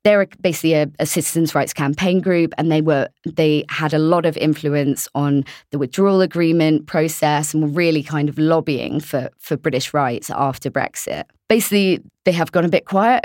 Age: 20-39